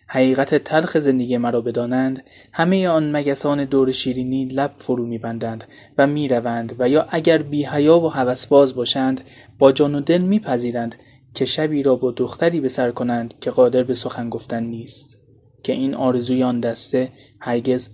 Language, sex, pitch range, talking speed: Persian, male, 125-145 Hz, 160 wpm